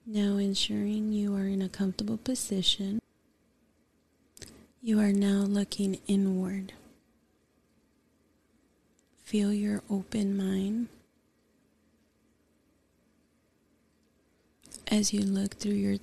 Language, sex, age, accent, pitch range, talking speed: English, female, 30-49, American, 195-210 Hz, 80 wpm